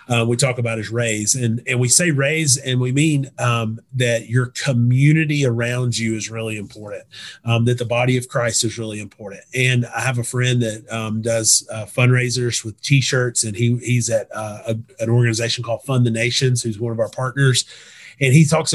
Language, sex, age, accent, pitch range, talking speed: English, male, 30-49, American, 115-130 Hz, 205 wpm